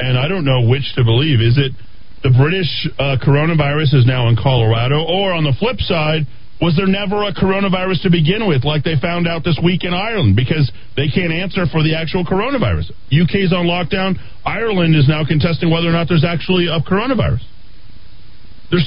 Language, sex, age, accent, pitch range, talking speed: English, male, 40-59, American, 100-160 Hz, 195 wpm